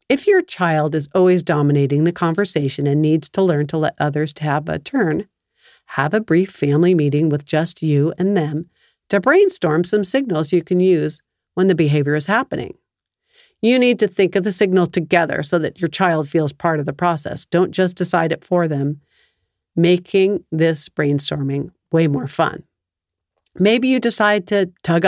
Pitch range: 150-195 Hz